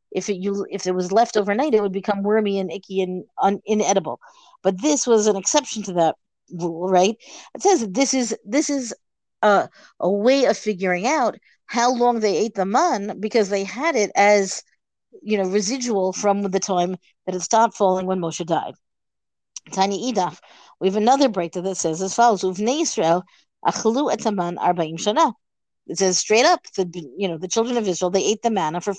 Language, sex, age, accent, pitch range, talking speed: English, female, 50-69, American, 190-260 Hz, 185 wpm